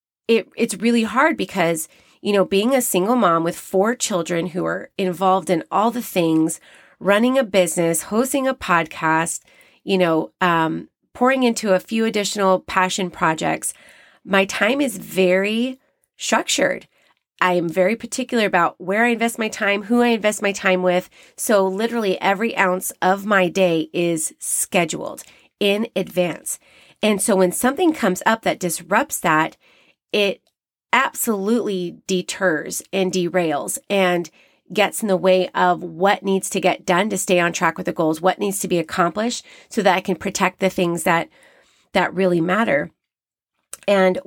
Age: 30-49